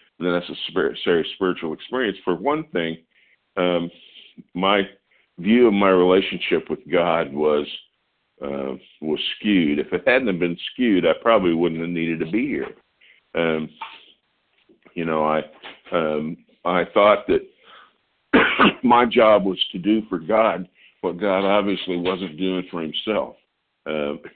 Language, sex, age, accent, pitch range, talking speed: English, male, 50-69, American, 75-90 Hz, 135 wpm